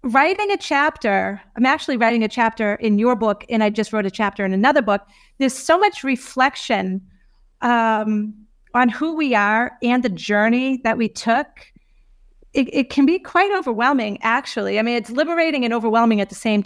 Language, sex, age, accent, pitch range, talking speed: English, female, 40-59, American, 215-270 Hz, 185 wpm